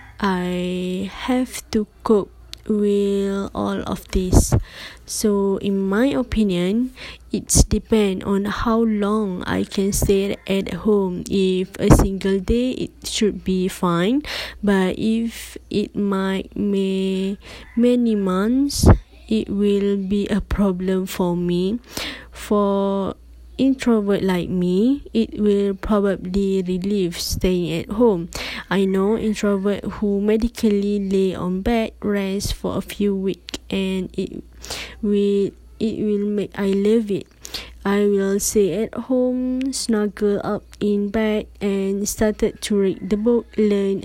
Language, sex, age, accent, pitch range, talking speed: English, female, 20-39, Malaysian, 195-215 Hz, 125 wpm